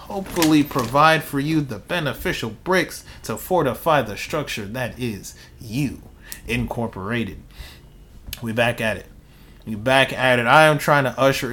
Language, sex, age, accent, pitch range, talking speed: English, male, 30-49, American, 115-145 Hz, 145 wpm